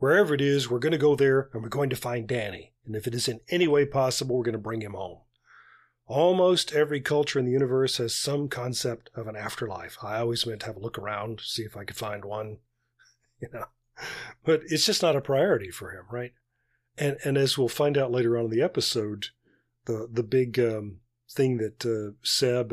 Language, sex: English, male